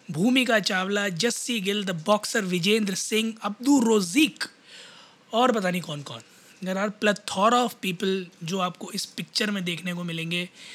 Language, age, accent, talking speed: Hindi, 20-39, native, 155 wpm